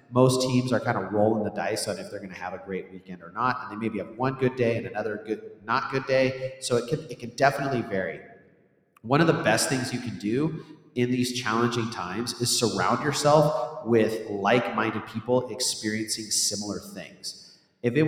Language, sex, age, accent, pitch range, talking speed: English, male, 30-49, American, 105-125 Hz, 205 wpm